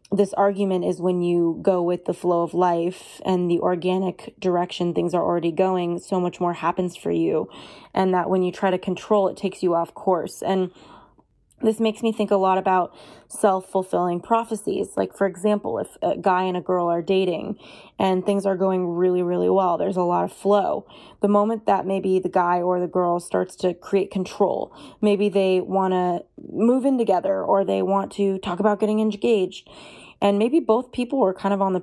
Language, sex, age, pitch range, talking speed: English, female, 20-39, 180-210 Hz, 200 wpm